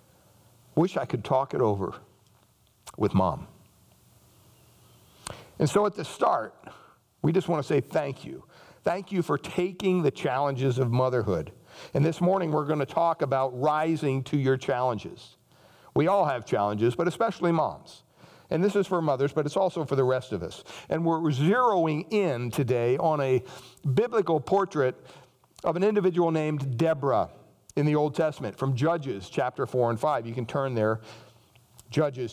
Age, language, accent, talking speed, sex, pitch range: 60-79, English, American, 165 wpm, male, 120-160 Hz